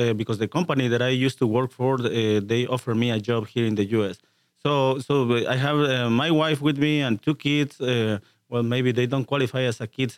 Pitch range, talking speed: 115-135 Hz, 240 wpm